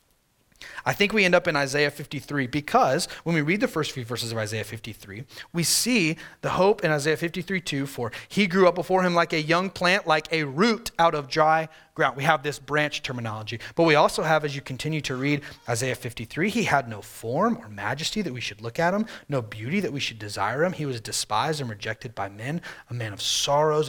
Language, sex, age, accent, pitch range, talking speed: English, male, 30-49, American, 120-160 Hz, 225 wpm